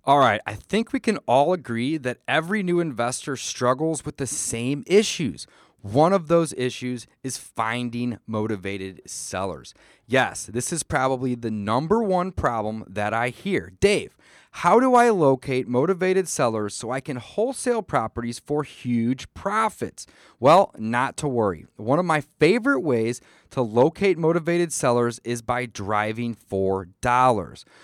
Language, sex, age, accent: English, male, 30-49, American